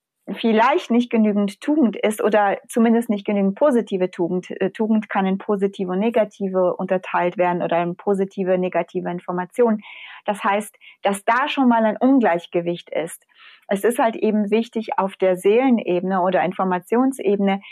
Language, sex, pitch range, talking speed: German, female, 185-220 Hz, 145 wpm